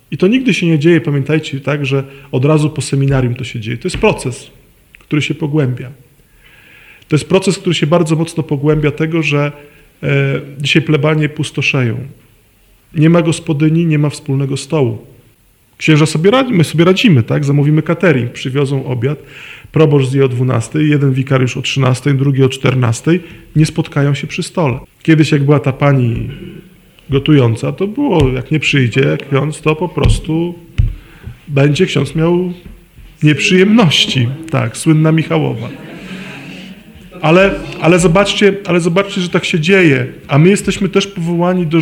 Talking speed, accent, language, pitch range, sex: 155 wpm, native, Polish, 135-170 Hz, male